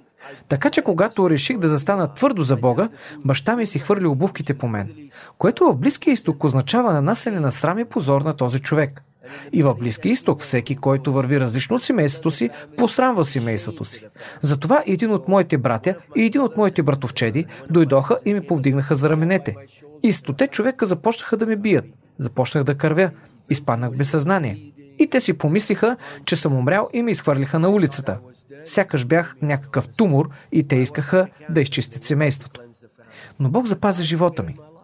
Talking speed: 170 wpm